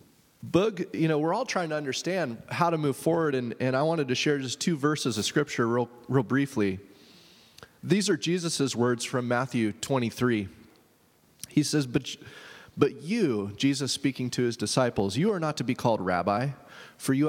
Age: 30-49